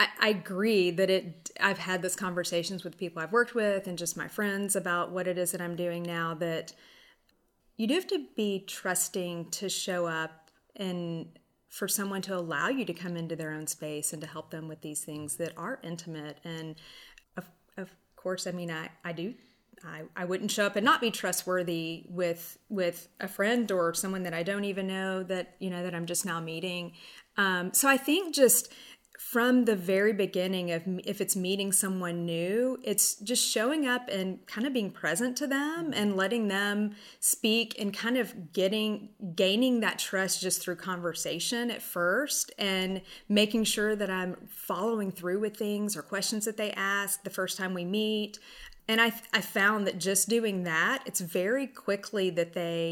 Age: 30-49